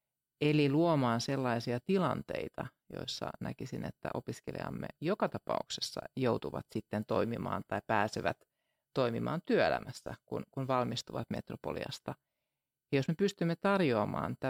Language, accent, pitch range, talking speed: Finnish, native, 120-145 Hz, 100 wpm